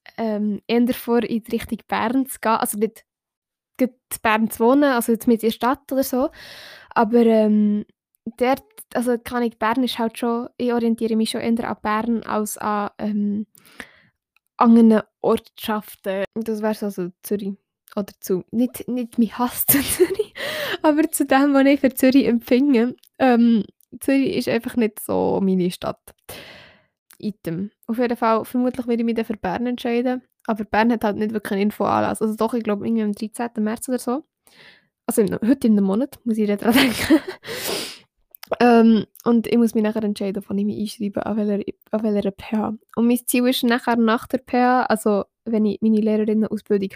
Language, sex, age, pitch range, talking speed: German, female, 10-29, 215-245 Hz, 175 wpm